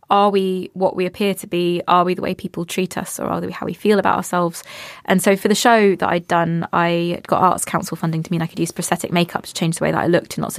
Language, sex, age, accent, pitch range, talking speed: English, female, 20-39, British, 170-200 Hz, 290 wpm